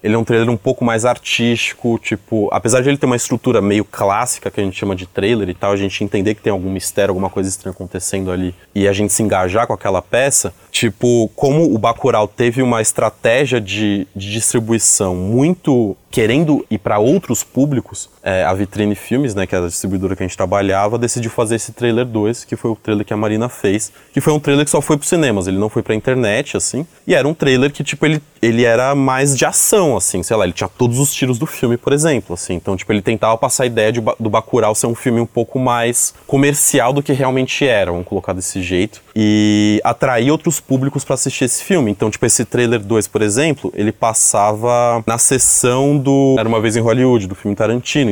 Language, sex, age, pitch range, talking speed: Portuguese, male, 20-39, 100-130 Hz, 225 wpm